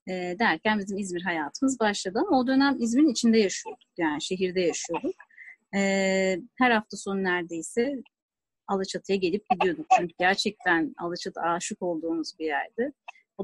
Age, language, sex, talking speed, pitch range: 30-49, Turkish, female, 130 wpm, 185-270 Hz